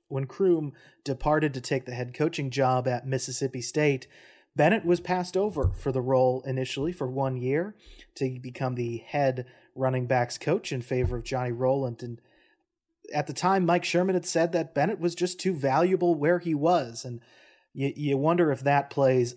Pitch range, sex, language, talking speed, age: 125-155 Hz, male, English, 185 wpm, 30-49